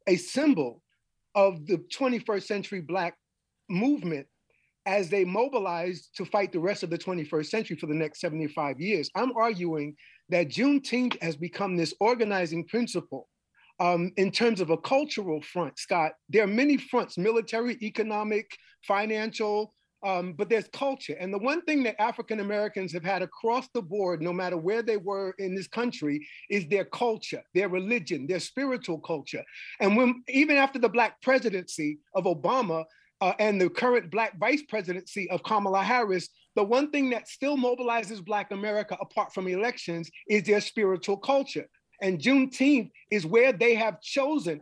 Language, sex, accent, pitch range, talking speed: English, male, American, 180-235 Hz, 165 wpm